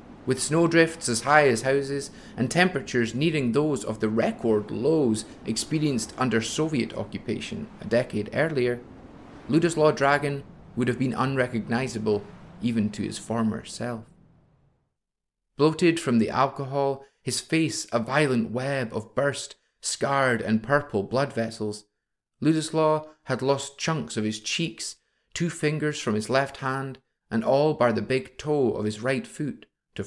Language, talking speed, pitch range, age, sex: English, 145 wpm, 115-145 Hz, 30-49, male